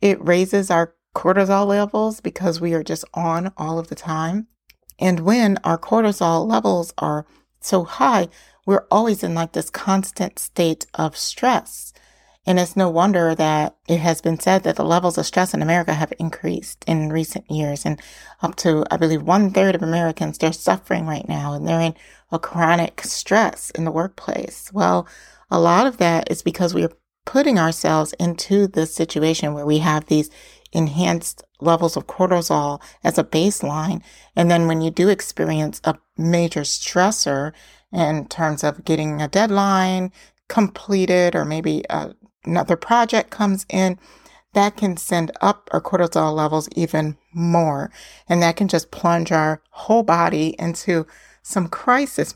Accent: American